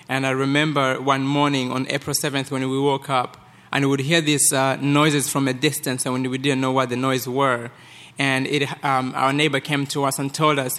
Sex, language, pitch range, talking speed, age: male, English, 130-150 Hz, 230 wpm, 20-39